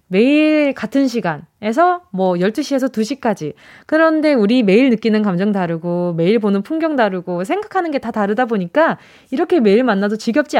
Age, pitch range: 20-39, 200-310 Hz